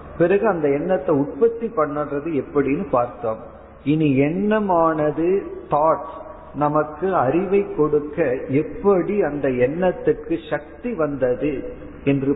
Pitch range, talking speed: 135-180 Hz, 60 wpm